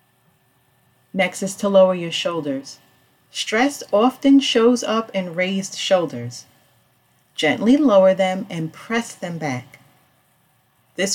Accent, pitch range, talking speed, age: American, 160-205 Hz, 115 wpm, 40-59